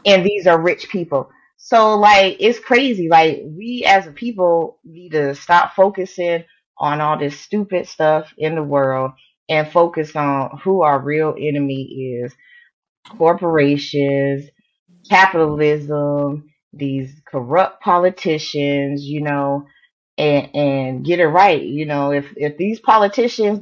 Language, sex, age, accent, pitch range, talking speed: English, female, 20-39, American, 145-210 Hz, 130 wpm